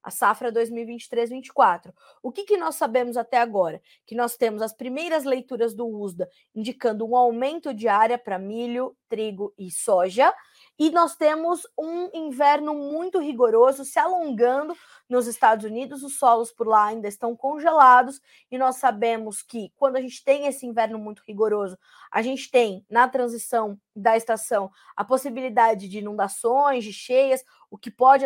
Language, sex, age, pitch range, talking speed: Portuguese, female, 20-39, 220-295 Hz, 160 wpm